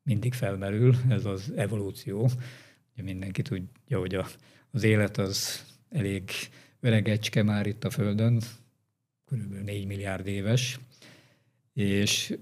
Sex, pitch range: male, 105-135 Hz